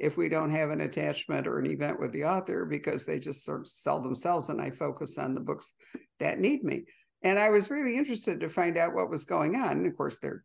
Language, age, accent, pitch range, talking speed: English, 60-79, American, 220-340 Hz, 245 wpm